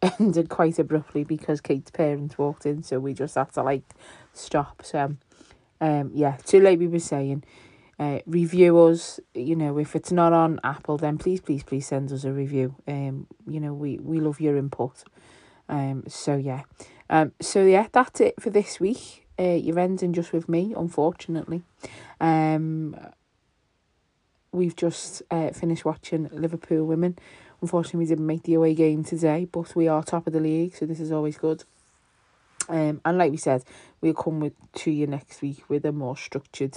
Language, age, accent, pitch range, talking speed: English, 30-49, British, 140-165 Hz, 180 wpm